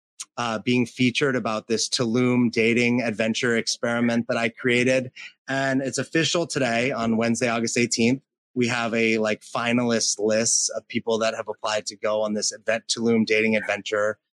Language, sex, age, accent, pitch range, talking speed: English, male, 30-49, American, 110-135 Hz, 165 wpm